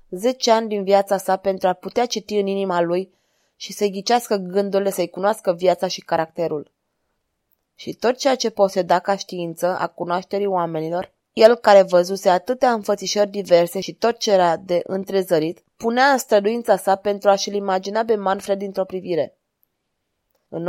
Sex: female